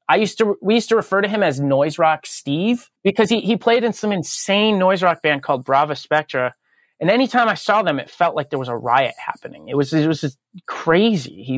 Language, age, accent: English, 30-49, American